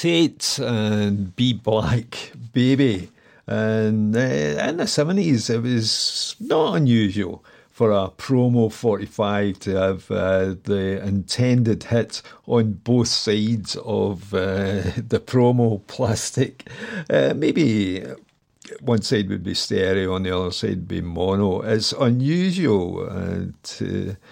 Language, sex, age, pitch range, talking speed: English, male, 50-69, 95-120 Hz, 120 wpm